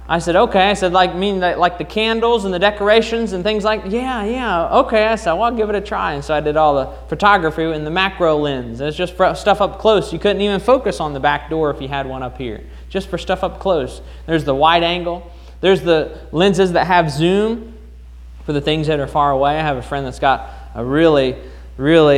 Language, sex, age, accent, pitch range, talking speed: English, male, 20-39, American, 150-210 Hz, 245 wpm